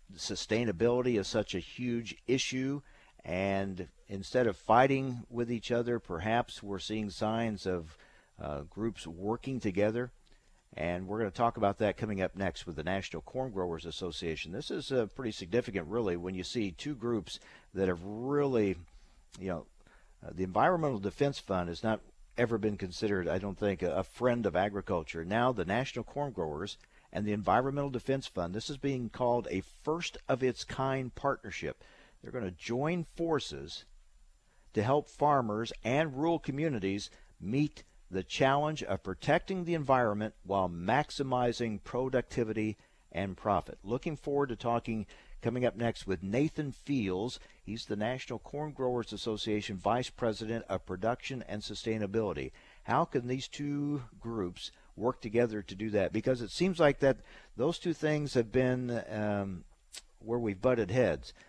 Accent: American